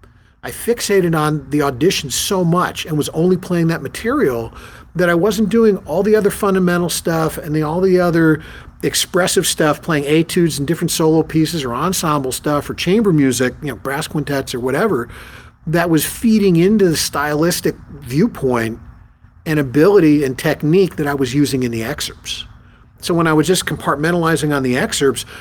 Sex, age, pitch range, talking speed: male, 50-69, 135-170 Hz, 175 wpm